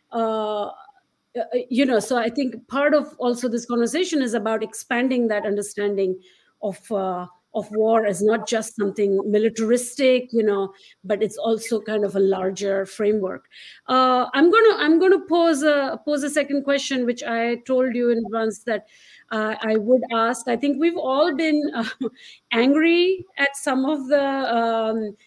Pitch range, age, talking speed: 215-270 Hz, 50-69, 170 wpm